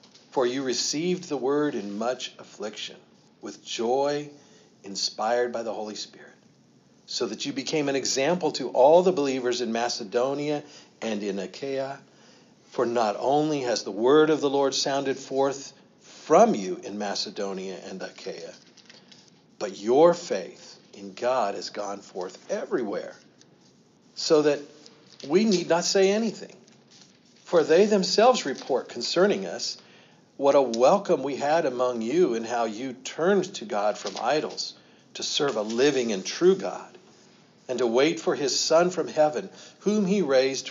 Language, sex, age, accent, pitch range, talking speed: English, male, 50-69, American, 120-160 Hz, 150 wpm